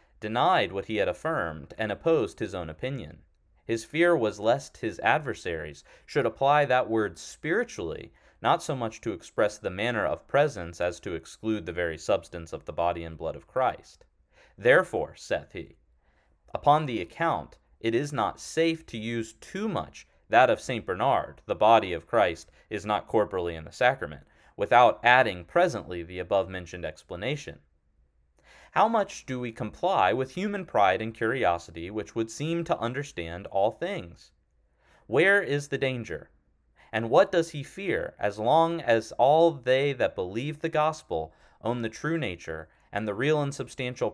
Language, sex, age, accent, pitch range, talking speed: English, male, 30-49, American, 85-140 Hz, 165 wpm